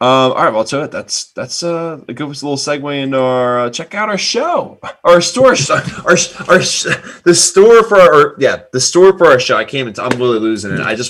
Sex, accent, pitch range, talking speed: male, American, 110-155 Hz, 240 wpm